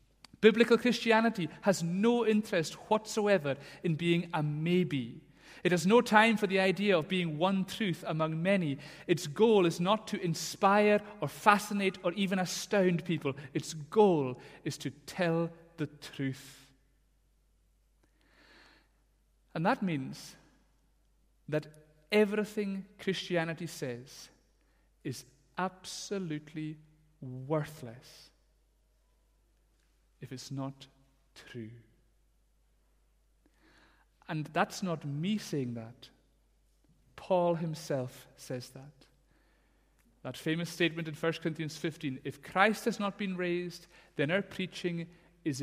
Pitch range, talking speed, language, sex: 135-185 Hz, 110 wpm, English, male